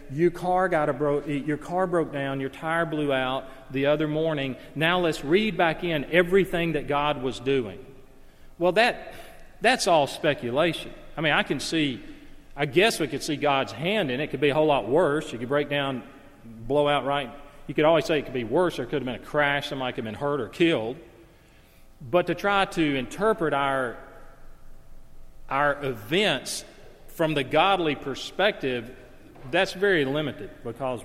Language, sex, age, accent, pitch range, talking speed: English, male, 40-59, American, 125-155 Hz, 185 wpm